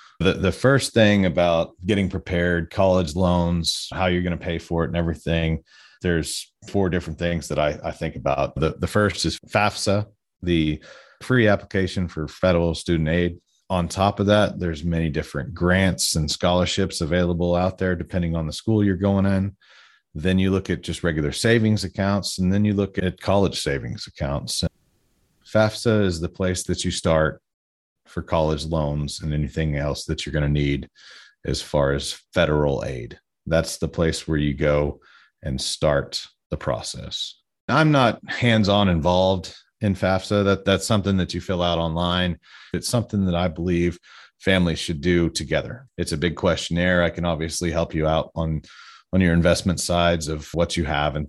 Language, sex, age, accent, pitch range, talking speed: English, male, 40-59, American, 80-95 Hz, 180 wpm